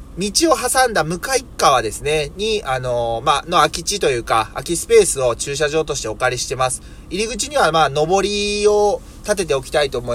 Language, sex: Japanese, male